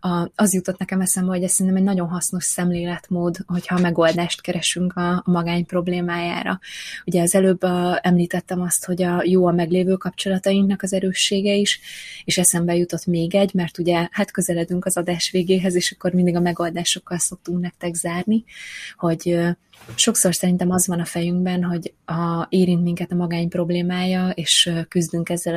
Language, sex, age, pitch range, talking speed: Hungarian, female, 20-39, 170-185 Hz, 160 wpm